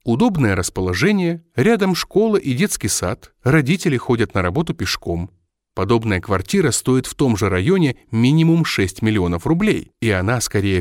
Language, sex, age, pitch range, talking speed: Russian, male, 30-49, 105-155 Hz, 145 wpm